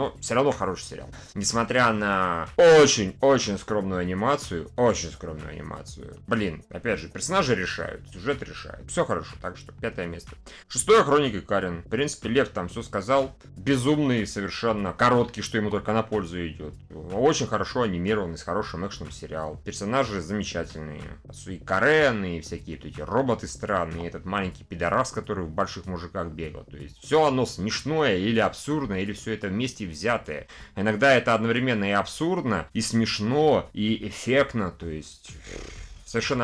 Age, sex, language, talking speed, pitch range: 30-49, male, Russian, 155 wpm, 85-115 Hz